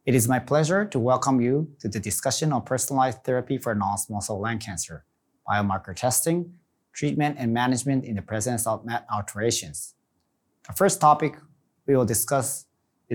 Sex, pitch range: male, 110-135 Hz